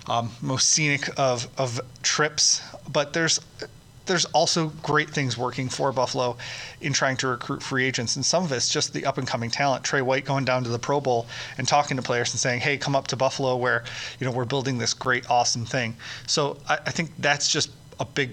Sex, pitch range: male, 125-145 Hz